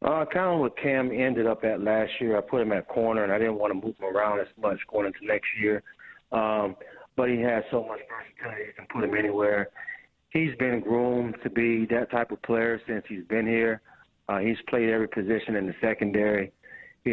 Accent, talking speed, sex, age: American, 220 wpm, male, 40-59